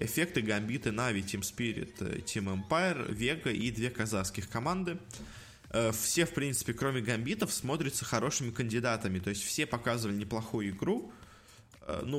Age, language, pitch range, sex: 20-39, Russian, 100-125 Hz, male